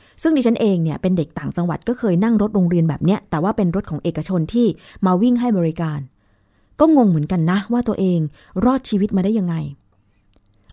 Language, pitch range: Thai, 160-225 Hz